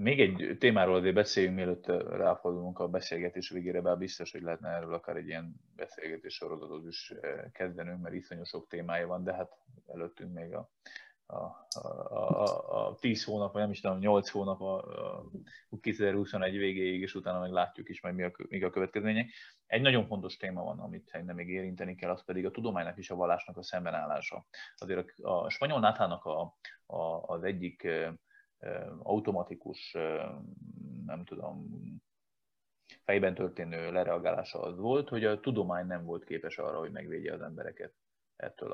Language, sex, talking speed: Hungarian, male, 155 wpm